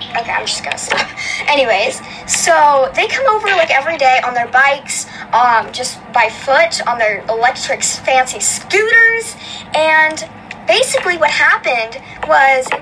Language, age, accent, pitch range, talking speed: English, 10-29, American, 250-360 Hz, 145 wpm